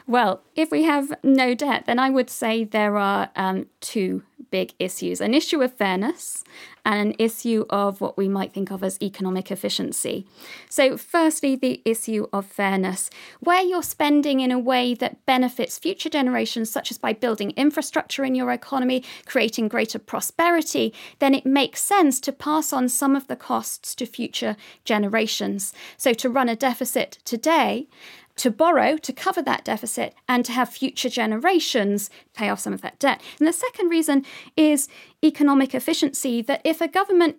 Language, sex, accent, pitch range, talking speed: English, female, British, 230-300 Hz, 170 wpm